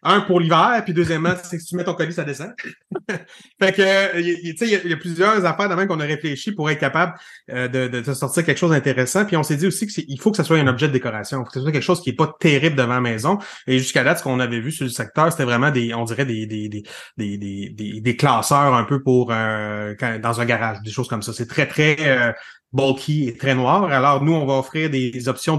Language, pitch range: French, 125-160 Hz